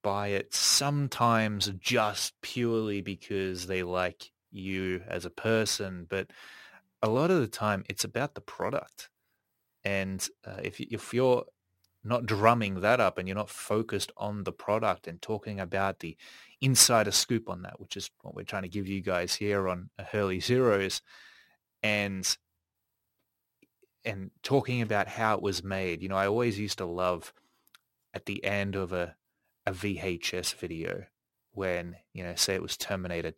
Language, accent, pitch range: English, Australian, 95-110 Hz